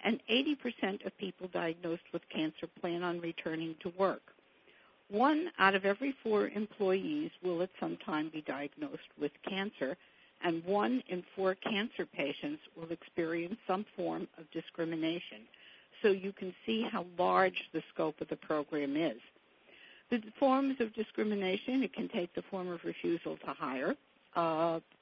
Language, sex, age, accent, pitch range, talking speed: English, female, 60-79, American, 160-200 Hz, 155 wpm